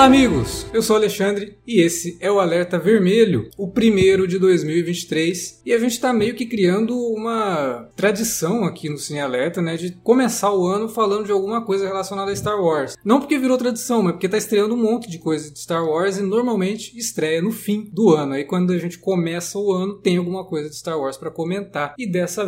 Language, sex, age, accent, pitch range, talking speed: Portuguese, male, 20-39, Brazilian, 145-200 Hz, 215 wpm